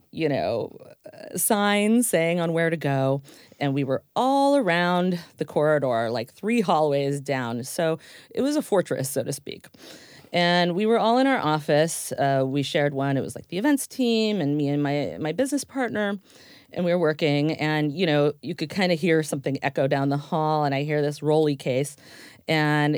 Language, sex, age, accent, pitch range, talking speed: English, female, 40-59, American, 145-195 Hz, 195 wpm